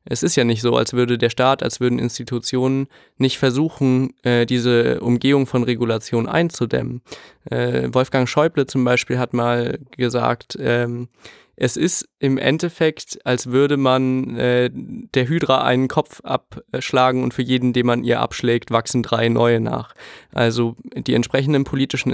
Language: German